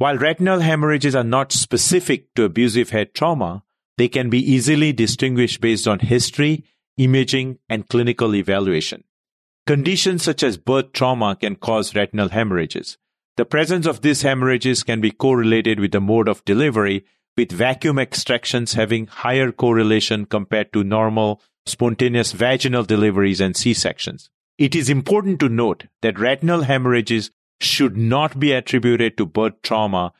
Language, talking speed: English, 145 wpm